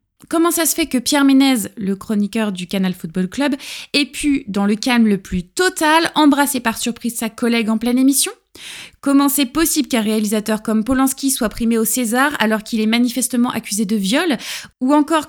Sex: female